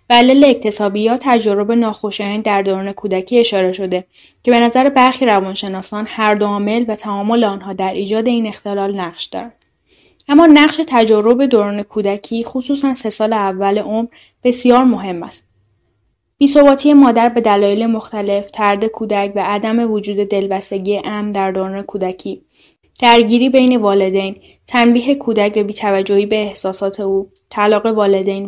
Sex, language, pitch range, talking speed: female, Persian, 195-235 Hz, 140 wpm